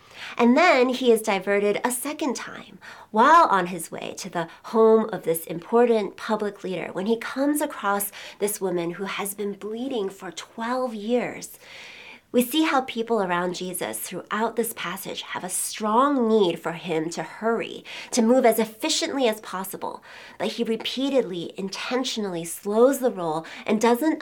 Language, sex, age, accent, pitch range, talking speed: English, female, 30-49, American, 195-255 Hz, 160 wpm